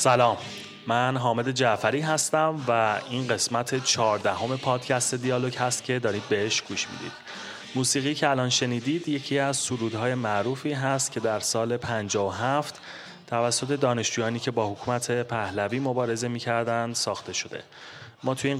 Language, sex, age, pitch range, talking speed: Persian, male, 30-49, 110-130 Hz, 140 wpm